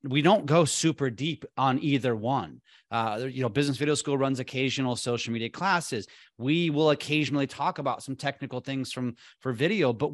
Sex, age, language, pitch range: male, 30-49, English, 120-145 Hz